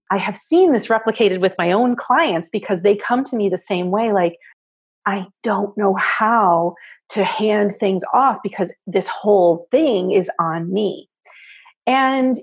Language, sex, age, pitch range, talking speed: English, female, 30-49, 195-280 Hz, 165 wpm